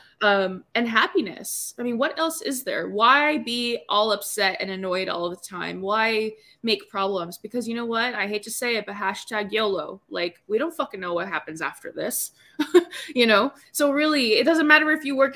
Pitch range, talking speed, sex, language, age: 195-245 Hz, 205 wpm, female, English, 20-39